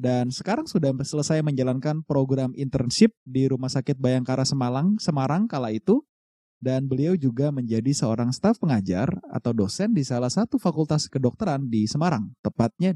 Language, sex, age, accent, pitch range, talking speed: Indonesian, male, 20-39, native, 130-185 Hz, 150 wpm